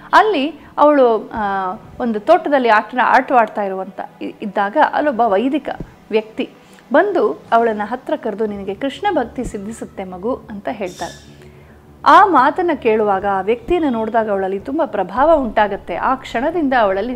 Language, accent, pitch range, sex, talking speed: Kannada, native, 205-275 Hz, female, 125 wpm